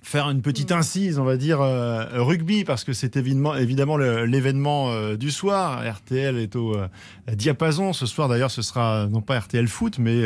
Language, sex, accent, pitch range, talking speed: French, male, French, 125-165 Hz, 200 wpm